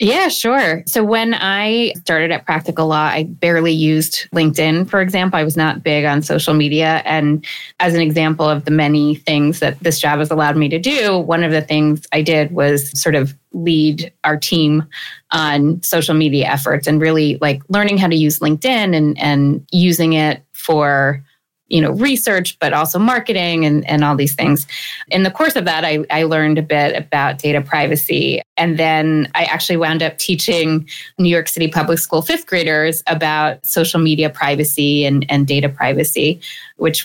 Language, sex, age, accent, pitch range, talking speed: English, female, 20-39, American, 150-175 Hz, 185 wpm